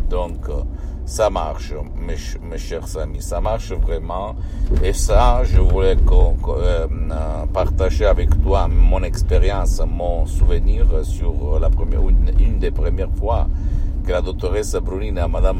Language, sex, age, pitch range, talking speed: Italian, male, 60-79, 80-90 Hz, 145 wpm